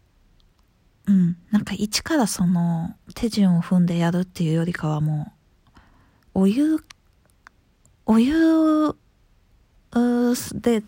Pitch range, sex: 175-245 Hz, female